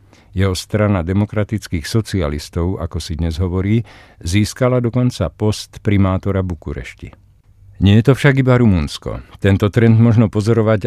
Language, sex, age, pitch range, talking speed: Czech, male, 50-69, 90-110 Hz, 125 wpm